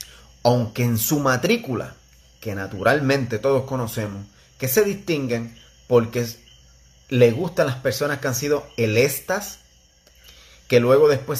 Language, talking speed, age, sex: Spanish, 120 wpm, 30-49, male